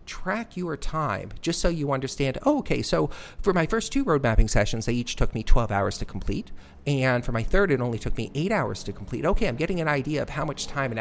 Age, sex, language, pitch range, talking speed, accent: 40-59, male, English, 105-130 Hz, 250 wpm, American